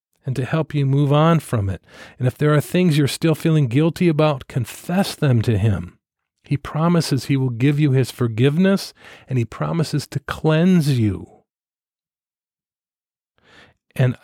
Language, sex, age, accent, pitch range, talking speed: English, male, 40-59, American, 110-150 Hz, 155 wpm